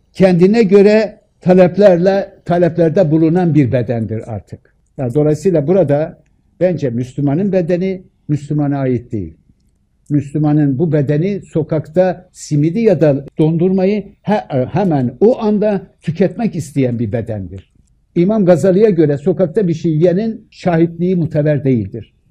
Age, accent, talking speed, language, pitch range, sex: 60-79, native, 115 wpm, Turkish, 125-165 Hz, male